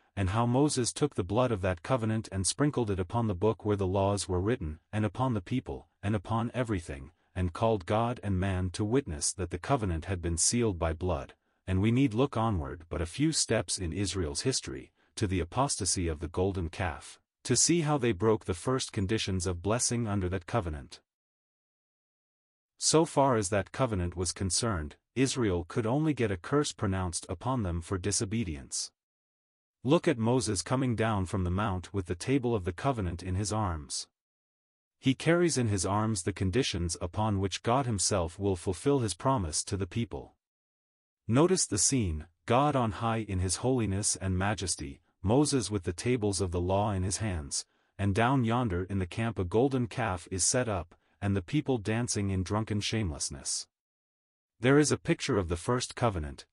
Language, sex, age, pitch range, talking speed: English, male, 40-59, 90-120 Hz, 185 wpm